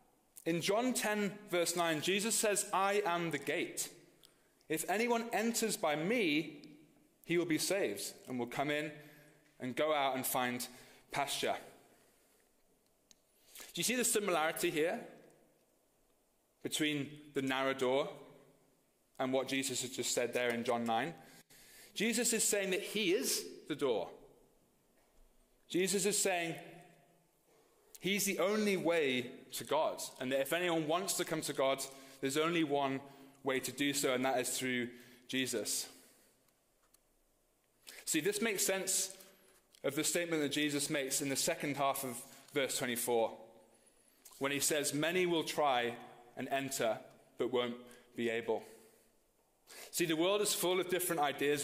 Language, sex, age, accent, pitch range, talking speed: English, male, 30-49, British, 130-180 Hz, 145 wpm